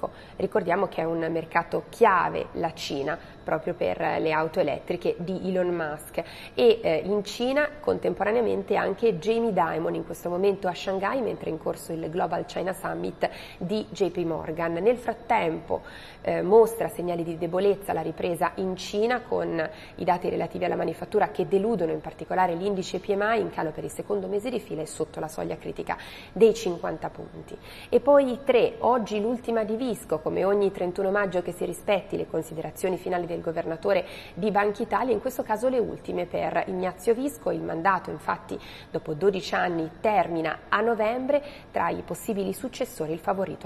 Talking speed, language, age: 170 wpm, Italian, 30-49